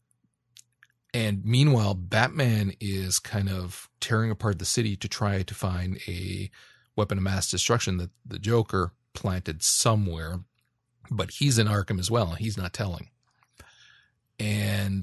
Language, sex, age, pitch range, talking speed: English, male, 40-59, 95-115 Hz, 135 wpm